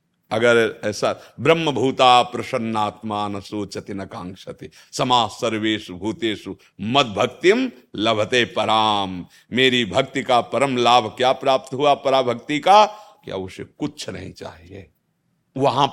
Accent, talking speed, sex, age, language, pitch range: native, 120 wpm, male, 50-69, Hindi, 115-170 Hz